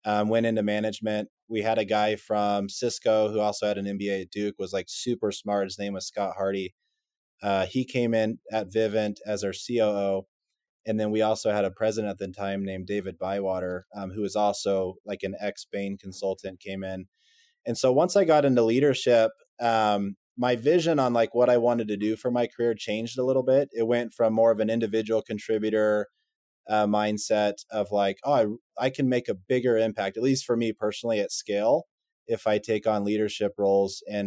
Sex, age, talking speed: male, 20-39, 205 wpm